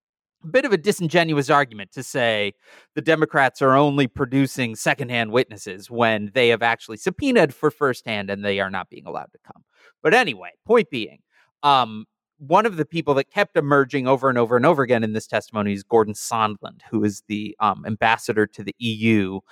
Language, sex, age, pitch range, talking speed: English, male, 30-49, 110-145 Hz, 190 wpm